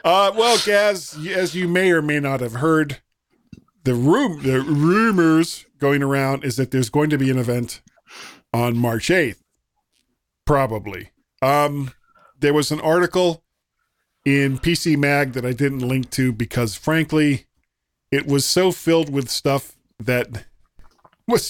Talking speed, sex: 145 wpm, male